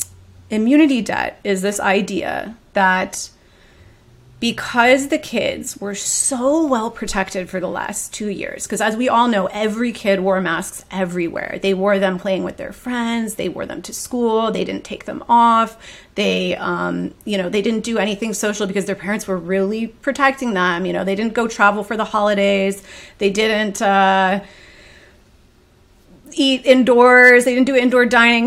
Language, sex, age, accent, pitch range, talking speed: English, female, 30-49, American, 195-260 Hz, 170 wpm